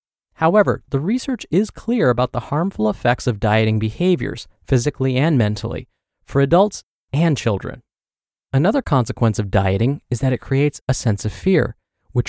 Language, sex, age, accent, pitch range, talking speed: English, male, 30-49, American, 110-155 Hz, 155 wpm